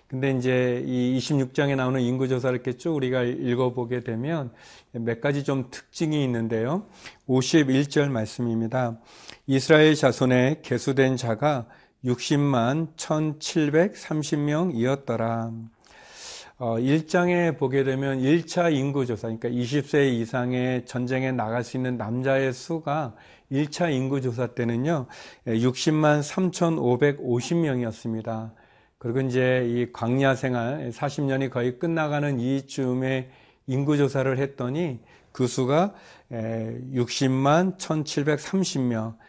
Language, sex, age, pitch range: Korean, male, 40-59, 125-150 Hz